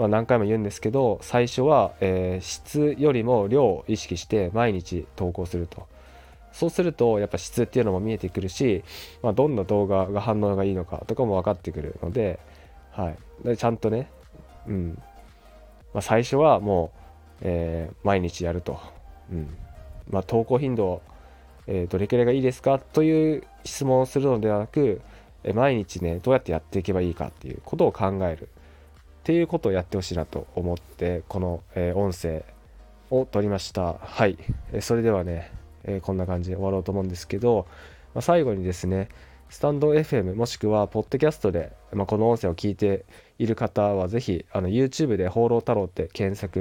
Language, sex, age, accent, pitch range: Japanese, male, 20-39, native, 85-115 Hz